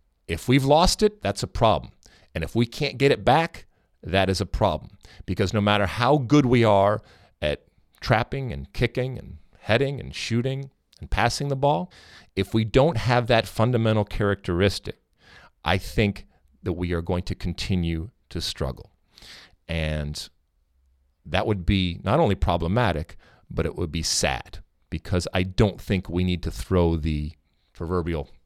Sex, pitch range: male, 80-105 Hz